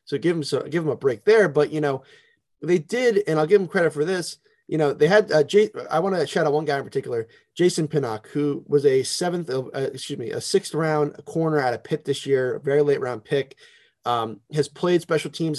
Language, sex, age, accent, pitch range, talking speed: English, male, 20-39, American, 140-180 Hz, 255 wpm